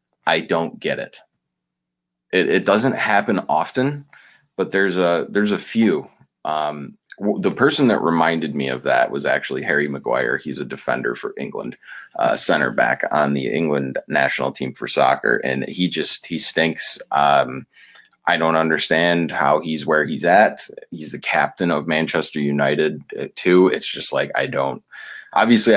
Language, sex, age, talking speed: English, male, 20-39, 160 wpm